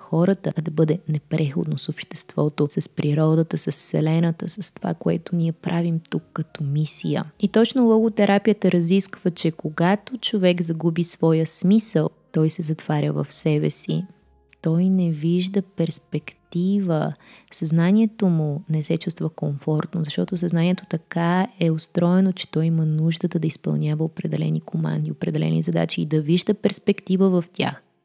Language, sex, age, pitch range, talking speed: Bulgarian, female, 20-39, 155-195 Hz, 140 wpm